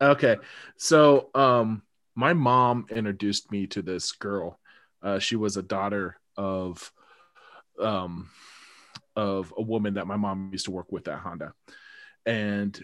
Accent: American